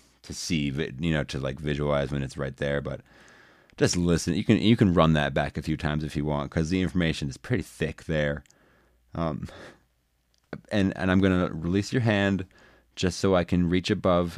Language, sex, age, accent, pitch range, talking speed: English, male, 30-49, American, 75-105 Hz, 200 wpm